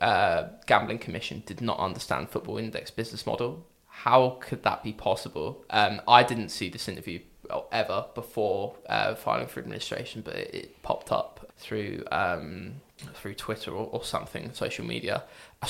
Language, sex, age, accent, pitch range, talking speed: English, male, 20-39, British, 110-120 Hz, 155 wpm